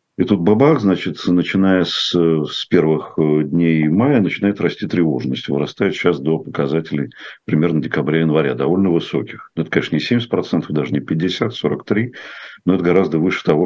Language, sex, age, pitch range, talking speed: Russian, male, 50-69, 75-85 Hz, 150 wpm